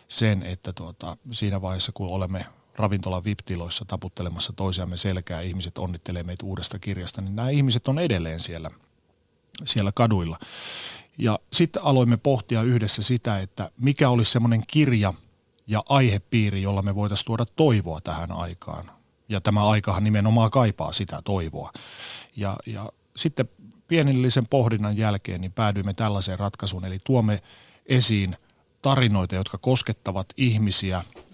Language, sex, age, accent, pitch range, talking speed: Finnish, male, 30-49, native, 100-125 Hz, 130 wpm